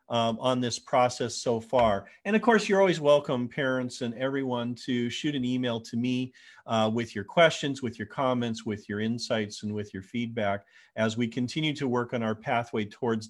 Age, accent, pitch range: 40-59, American, 115-160 Hz